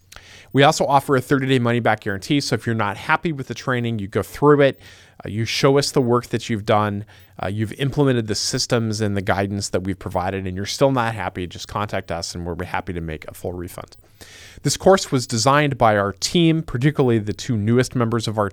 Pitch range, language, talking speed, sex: 95-125 Hz, English, 235 wpm, male